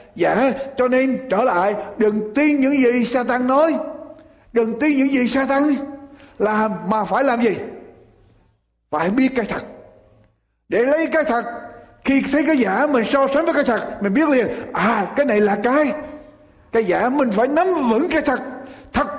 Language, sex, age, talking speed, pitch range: Vietnamese, male, 60-79, 175 wpm, 215-285 Hz